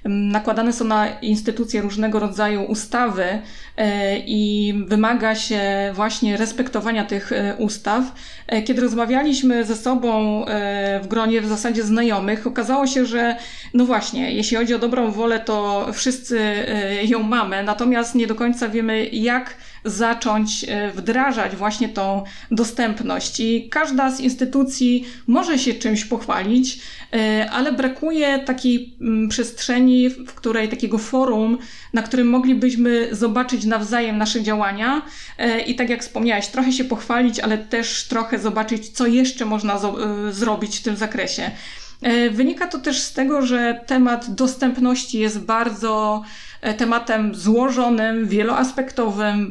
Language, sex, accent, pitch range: Polish, female, native, 215-250 Hz